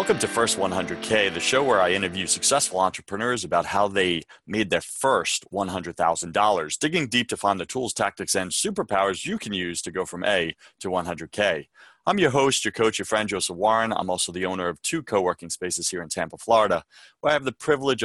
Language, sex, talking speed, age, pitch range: English, male, 205 wpm, 30-49, 95-115 Hz